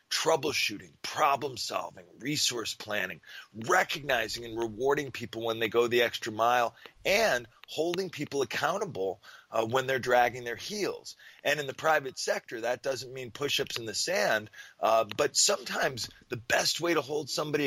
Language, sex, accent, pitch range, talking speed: English, male, American, 120-160 Hz, 155 wpm